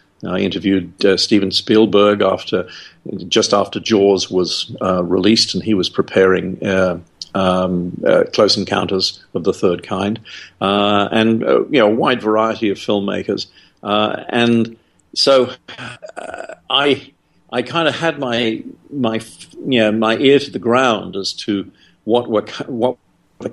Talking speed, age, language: 150 wpm, 50-69, English